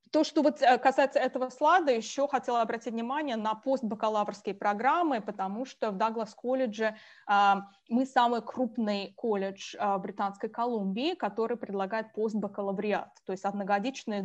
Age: 20-39